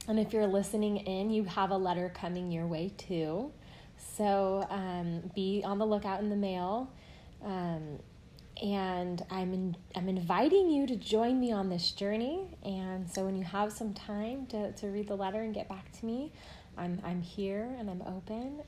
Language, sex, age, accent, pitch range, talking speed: English, female, 20-39, American, 175-215 Hz, 185 wpm